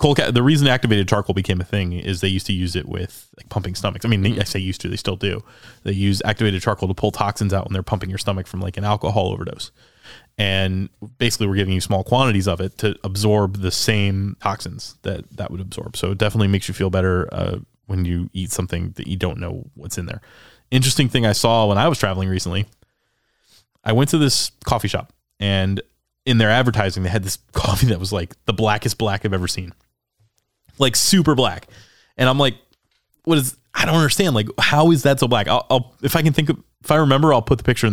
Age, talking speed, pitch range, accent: 20-39, 230 wpm, 100-130 Hz, American